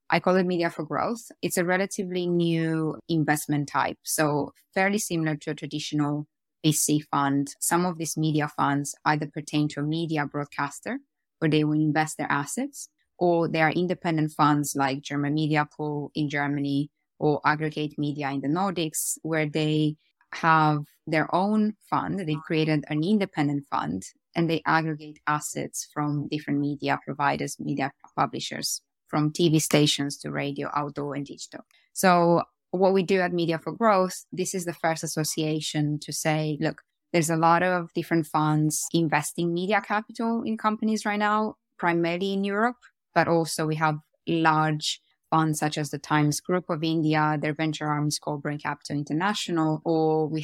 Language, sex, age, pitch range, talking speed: English, female, 20-39, 150-175 Hz, 165 wpm